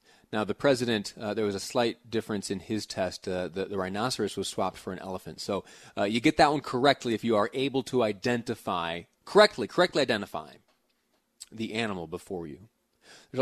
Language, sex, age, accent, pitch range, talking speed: English, male, 30-49, American, 105-130 Hz, 190 wpm